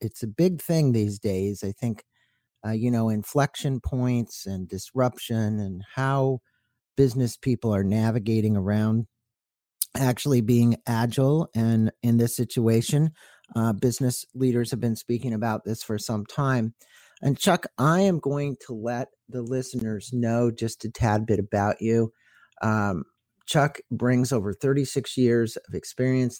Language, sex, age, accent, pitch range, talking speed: English, male, 50-69, American, 105-125 Hz, 145 wpm